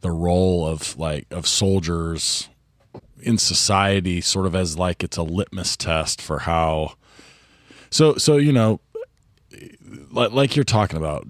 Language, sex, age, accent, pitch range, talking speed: English, male, 30-49, American, 80-105 Hz, 140 wpm